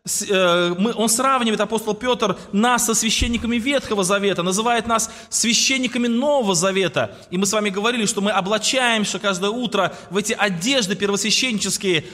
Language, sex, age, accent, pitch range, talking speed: Russian, male, 20-39, native, 175-240 Hz, 145 wpm